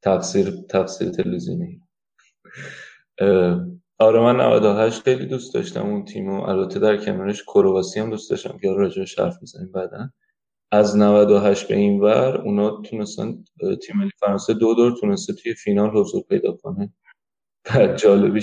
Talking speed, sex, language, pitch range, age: 120 wpm, male, Persian, 95-115 Hz, 20-39